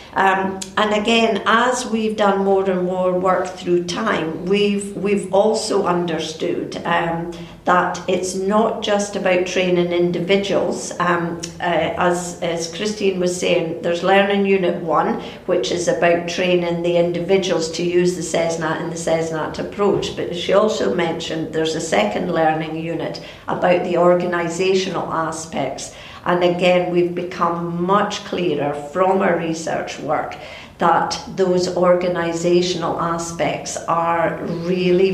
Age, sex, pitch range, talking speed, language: 50-69, female, 170-190 Hz, 135 wpm, English